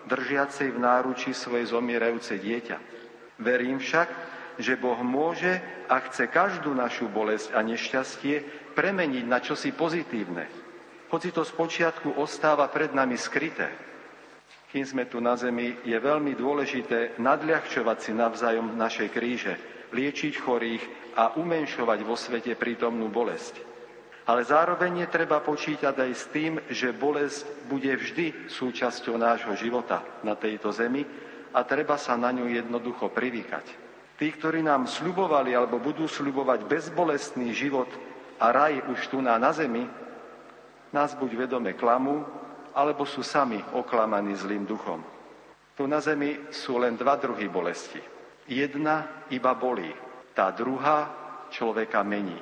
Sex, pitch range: male, 120-150 Hz